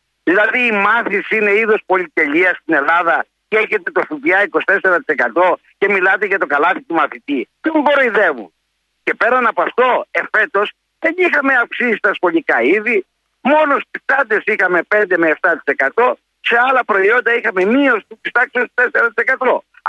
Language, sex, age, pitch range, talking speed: Greek, male, 50-69, 195-260 Hz, 150 wpm